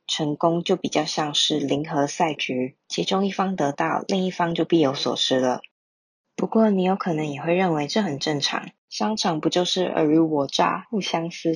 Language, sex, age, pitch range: Chinese, female, 20-39, 150-180 Hz